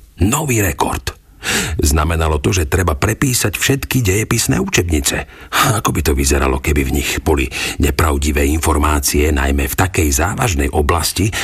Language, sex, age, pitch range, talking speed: Slovak, male, 50-69, 75-100 Hz, 130 wpm